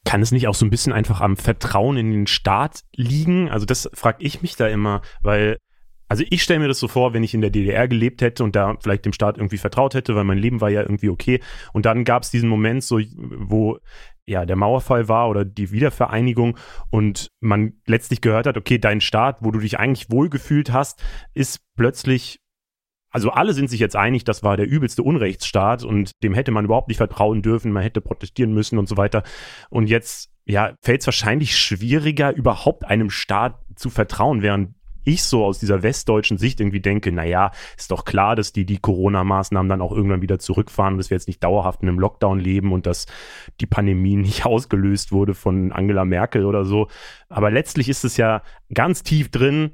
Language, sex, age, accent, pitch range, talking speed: German, male, 30-49, German, 100-125 Hz, 205 wpm